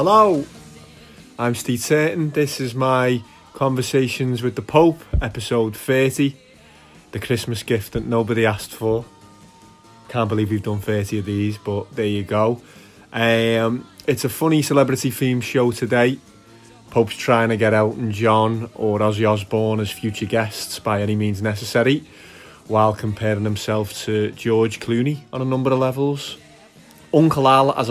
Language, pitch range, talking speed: English, 105-125 Hz, 150 wpm